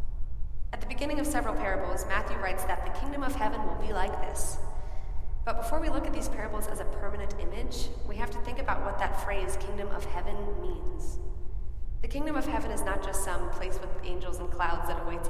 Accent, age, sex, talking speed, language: American, 20-39, female, 215 wpm, English